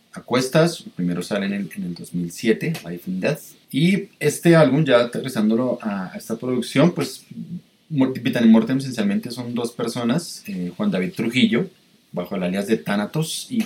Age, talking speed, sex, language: 30-49, 160 wpm, male, Spanish